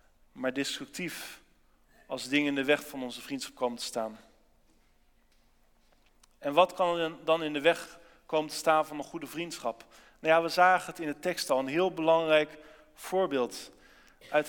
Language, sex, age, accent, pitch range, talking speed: Dutch, male, 40-59, Dutch, 145-165 Hz, 175 wpm